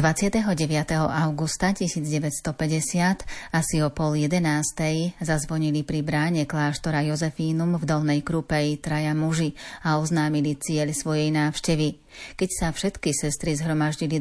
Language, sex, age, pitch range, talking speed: Slovak, female, 30-49, 150-165 Hz, 115 wpm